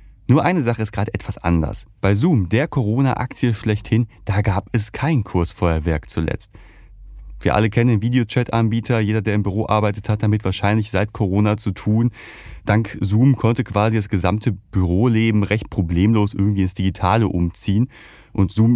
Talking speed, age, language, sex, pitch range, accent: 160 wpm, 30-49, German, male, 95-115 Hz, German